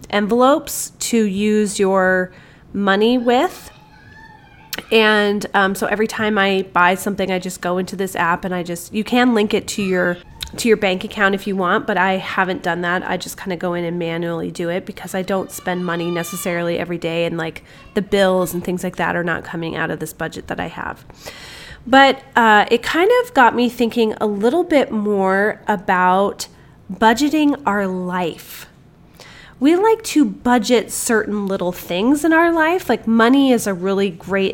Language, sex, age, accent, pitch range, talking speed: English, female, 30-49, American, 185-225 Hz, 190 wpm